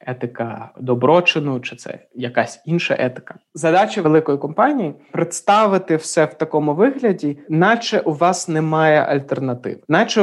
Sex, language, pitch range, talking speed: male, Ukrainian, 135-170 Hz, 130 wpm